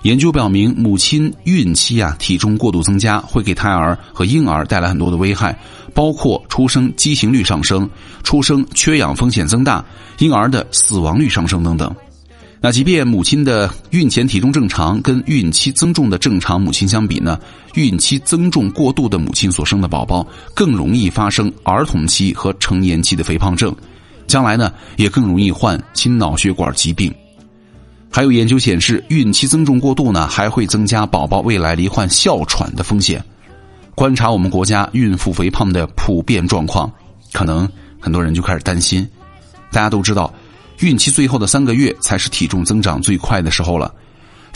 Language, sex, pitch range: Chinese, male, 90-130 Hz